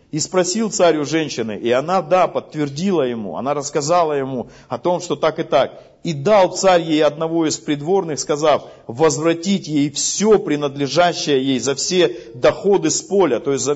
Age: 50-69